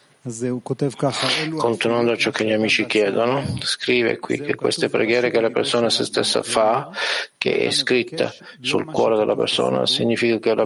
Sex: male